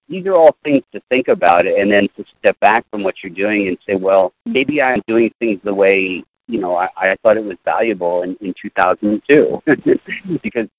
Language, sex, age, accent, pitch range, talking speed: English, male, 50-69, American, 95-150 Hz, 220 wpm